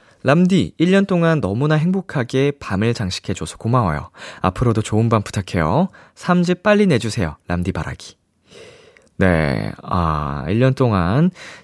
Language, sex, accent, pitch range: Korean, male, native, 90-140 Hz